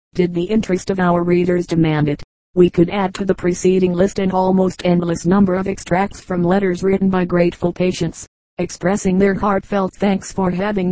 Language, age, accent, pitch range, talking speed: English, 40-59, American, 180-195 Hz, 180 wpm